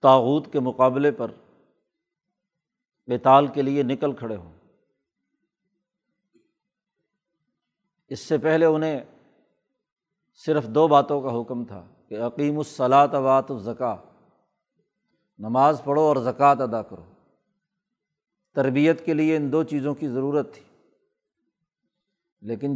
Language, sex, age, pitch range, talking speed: Urdu, male, 50-69, 130-160 Hz, 110 wpm